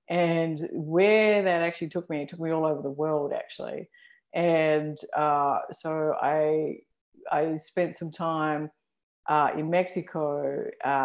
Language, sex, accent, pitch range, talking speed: English, female, Australian, 150-175 Hz, 140 wpm